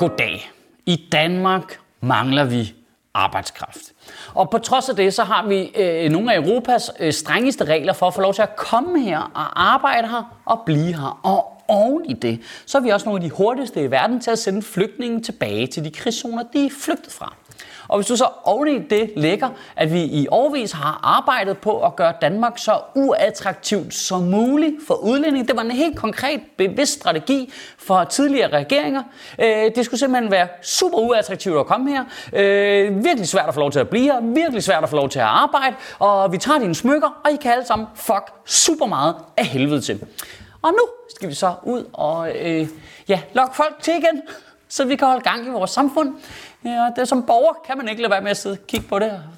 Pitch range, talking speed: 170-265 Hz, 210 wpm